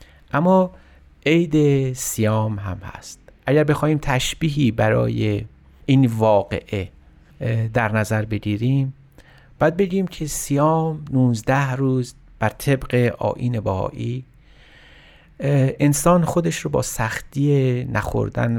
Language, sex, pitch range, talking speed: Persian, male, 105-140 Hz, 95 wpm